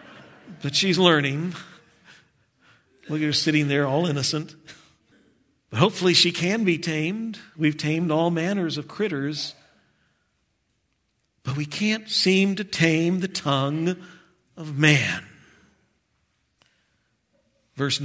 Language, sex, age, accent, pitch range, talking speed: English, male, 50-69, American, 155-215 Hz, 105 wpm